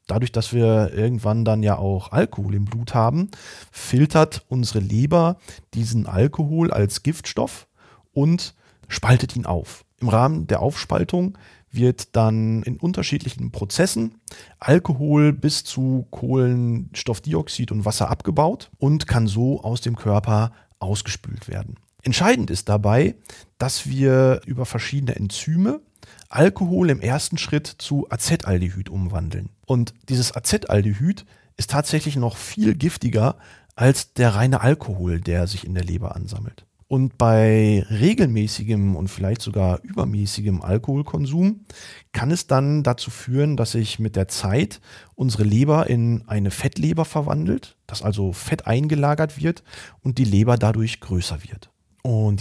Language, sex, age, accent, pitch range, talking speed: German, male, 40-59, German, 105-140 Hz, 130 wpm